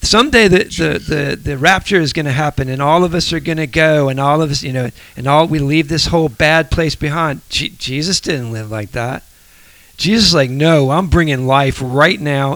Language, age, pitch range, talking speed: English, 40-59, 120-155 Hz, 215 wpm